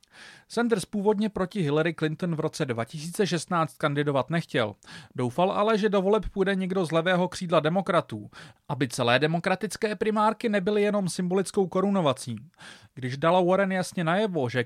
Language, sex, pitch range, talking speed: Czech, male, 150-195 Hz, 145 wpm